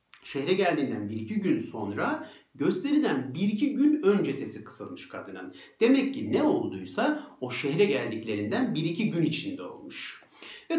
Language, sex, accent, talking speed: Turkish, male, native, 135 wpm